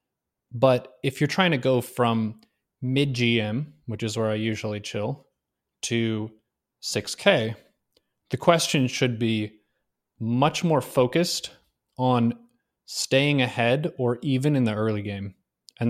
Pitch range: 115-140 Hz